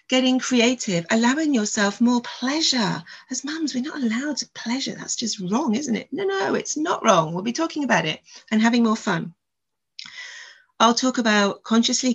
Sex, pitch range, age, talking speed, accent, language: female, 190-235 Hz, 40-59, 180 wpm, British, English